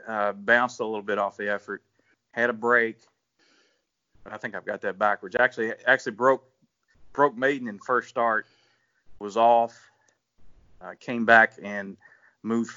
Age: 40-59